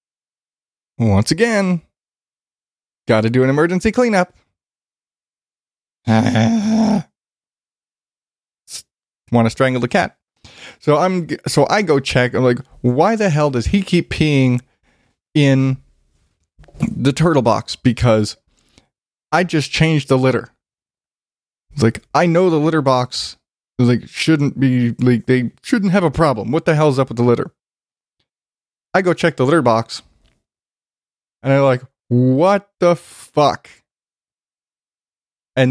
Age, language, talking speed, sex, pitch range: 20-39, English, 130 wpm, male, 125-170 Hz